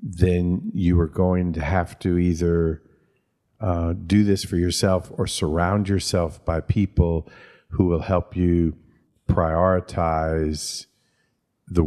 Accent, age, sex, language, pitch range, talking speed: American, 50-69, male, English, 80-90 Hz, 120 wpm